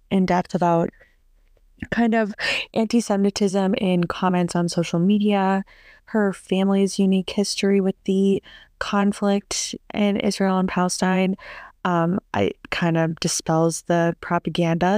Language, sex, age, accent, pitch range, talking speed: English, female, 20-39, American, 180-225 Hz, 110 wpm